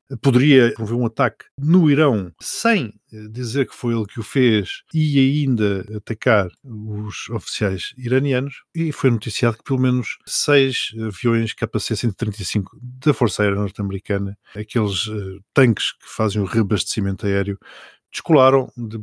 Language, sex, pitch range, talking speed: Portuguese, male, 105-140 Hz, 130 wpm